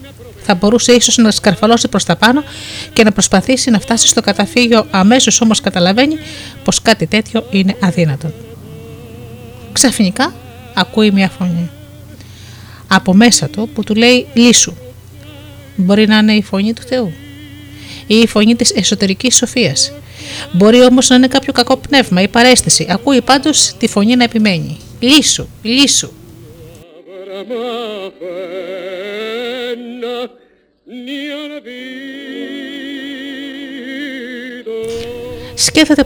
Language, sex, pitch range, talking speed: Greek, female, 160-245 Hz, 110 wpm